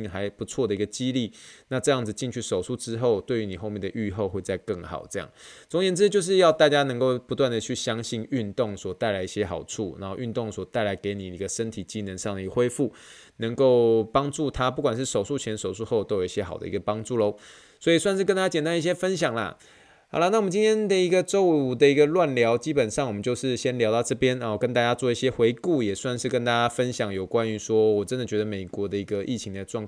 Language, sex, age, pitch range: Chinese, male, 20-39, 105-135 Hz